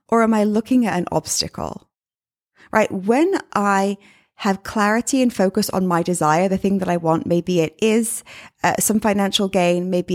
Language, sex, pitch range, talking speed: English, female, 180-230 Hz, 175 wpm